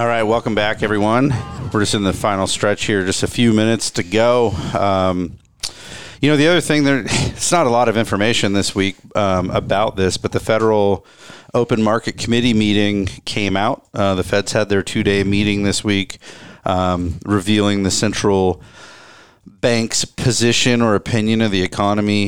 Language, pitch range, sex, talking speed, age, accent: English, 105-130 Hz, male, 180 wpm, 40-59, American